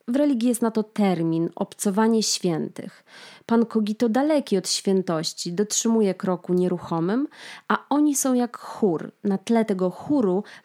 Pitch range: 180-225 Hz